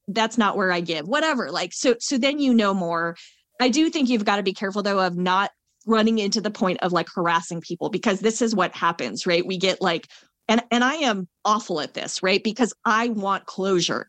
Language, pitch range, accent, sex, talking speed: English, 190-235 Hz, American, female, 225 wpm